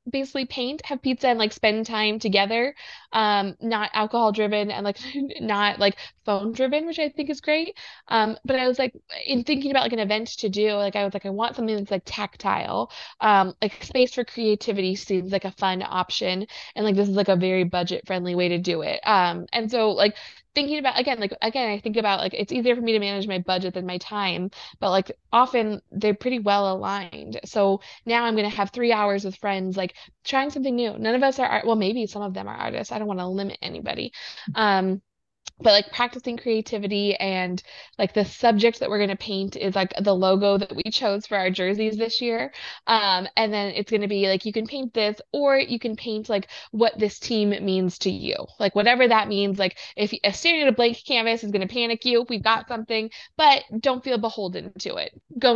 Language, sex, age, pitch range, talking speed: English, female, 20-39, 200-240 Hz, 225 wpm